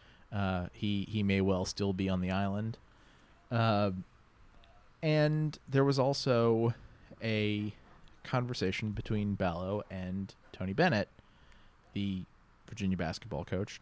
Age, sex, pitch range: 30-49, male, 100-125 Hz